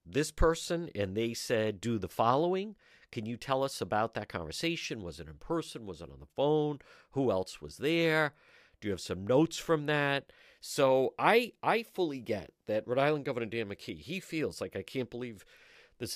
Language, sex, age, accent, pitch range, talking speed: English, male, 50-69, American, 105-150 Hz, 195 wpm